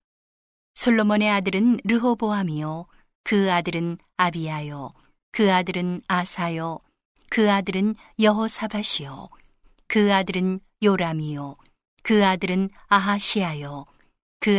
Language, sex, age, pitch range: Korean, female, 40-59, 175-210 Hz